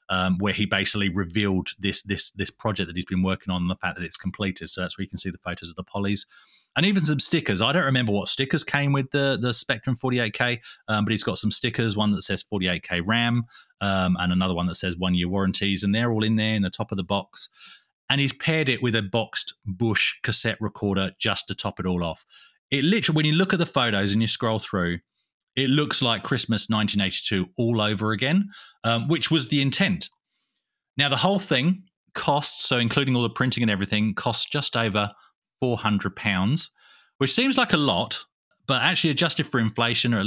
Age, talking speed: 30-49, 220 wpm